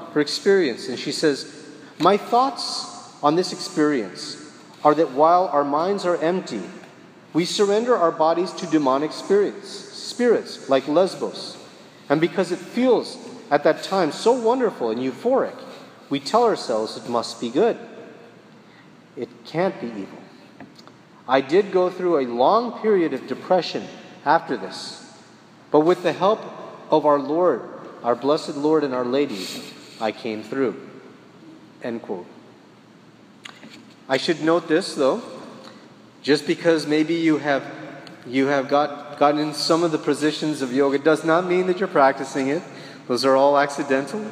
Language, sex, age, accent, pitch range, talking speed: English, male, 40-59, American, 135-170 Hz, 150 wpm